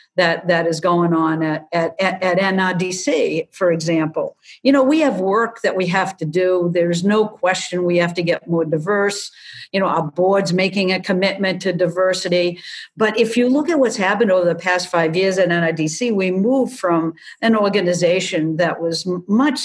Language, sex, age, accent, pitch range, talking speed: English, female, 50-69, American, 175-225 Hz, 190 wpm